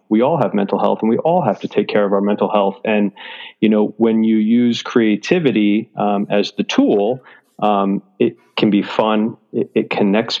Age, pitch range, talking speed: 30-49, 105-115 Hz, 200 wpm